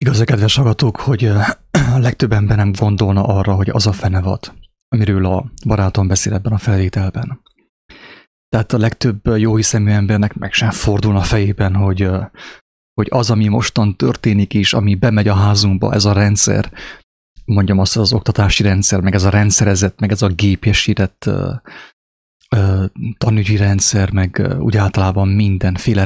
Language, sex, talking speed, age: English, male, 150 wpm, 30-49